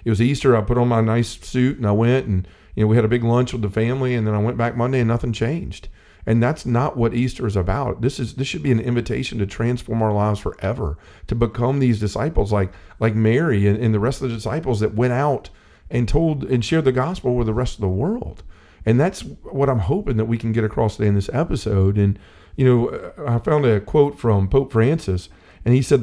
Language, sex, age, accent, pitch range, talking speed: English, male, 40-59, American, 100-130 Hz, 245 wpm